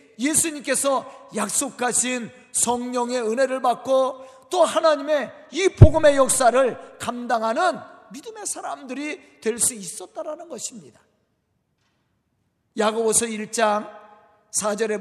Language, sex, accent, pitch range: Korean, male, native, 220-300 Hz